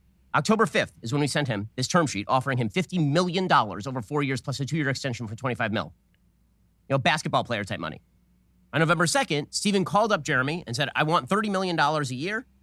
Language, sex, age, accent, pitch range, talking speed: English, male, 30-49, American, 115-180 Hz, 215 wpm